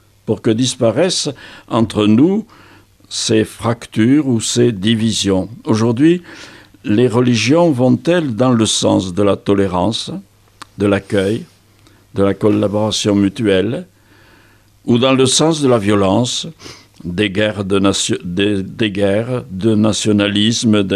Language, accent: French, French